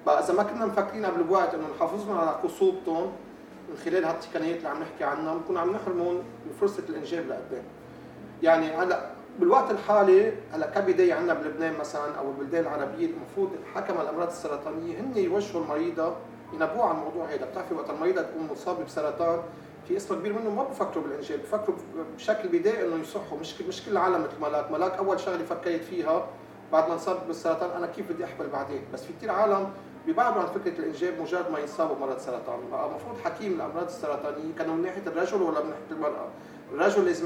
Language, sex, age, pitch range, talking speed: Arabic, male, 40-59, 160-265 Hz, 180 wpm